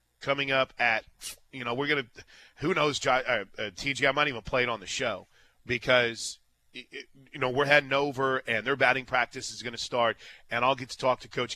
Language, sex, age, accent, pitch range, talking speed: English, male, 30-49, American, 110-140 Hz, 215 wpm